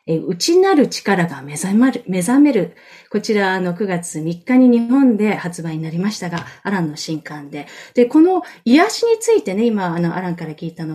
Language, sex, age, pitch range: Japanese, female, 30-49, 175-240 Hz